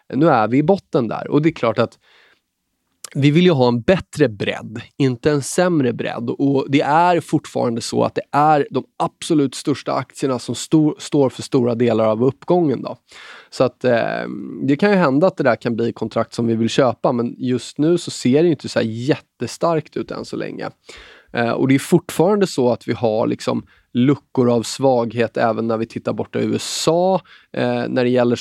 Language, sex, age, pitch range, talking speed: Swedish, male, 20-39, 115-145 Hz, 210 wpm